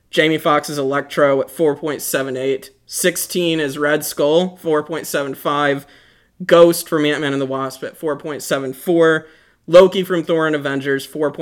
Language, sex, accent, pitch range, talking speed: English, male, American, 140-165 Hz, 125 wpm